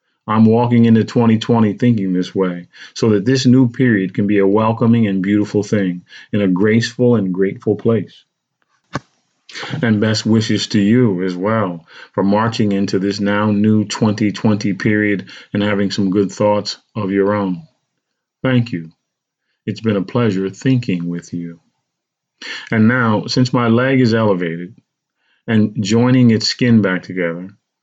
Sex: male